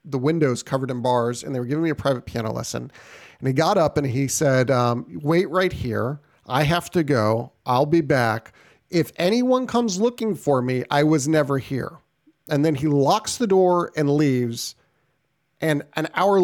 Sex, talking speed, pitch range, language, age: male, 195 wpm, 130-165 Hz, English, 40-59